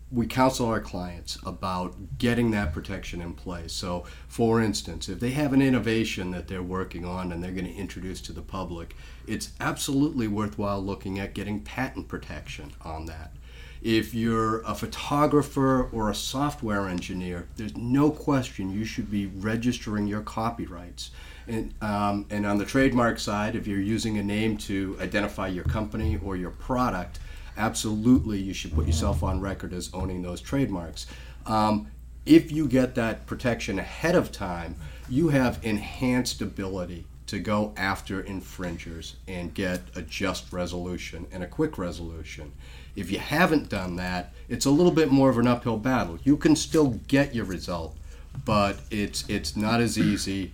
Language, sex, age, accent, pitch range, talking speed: English, male, 40-59, American, 90-115 Hz, 165 wpm